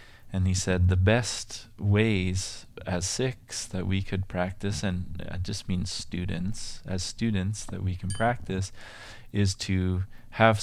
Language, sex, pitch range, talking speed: English, male, 90-110 Hz, 145 wpm